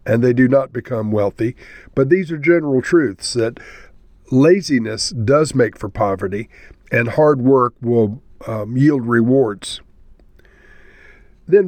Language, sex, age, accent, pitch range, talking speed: English, male, 50-69, American, 115-155 Hz, 130 wpm